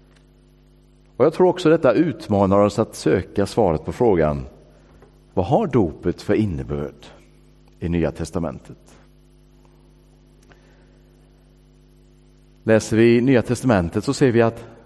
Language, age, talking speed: English, 50-69, 115 wpm